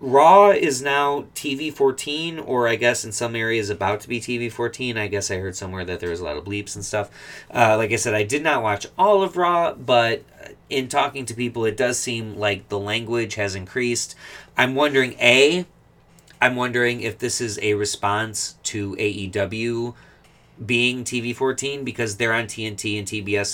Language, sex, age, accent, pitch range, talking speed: English, male, 30-49, American, 100-125 Hz, 190 wpm